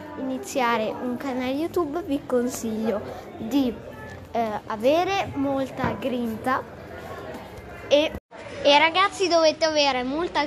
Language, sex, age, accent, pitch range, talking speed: Italian, female, 20-39, native, 235-290 Hz, 95 wpm